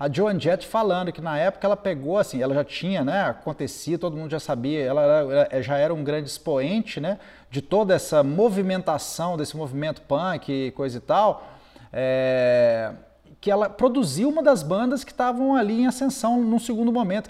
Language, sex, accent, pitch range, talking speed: Portuguese, male, Brazilian, 150-220 Hz, 175 wpm